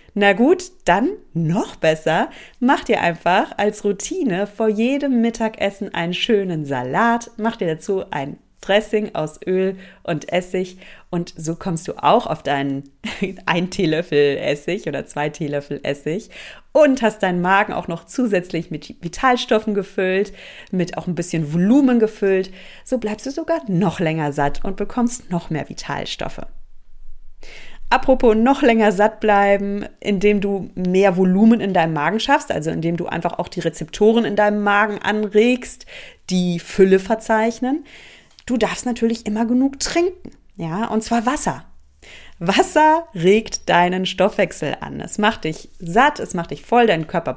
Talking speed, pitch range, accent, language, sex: 150 wpm, 170-230 Hz, German, German, female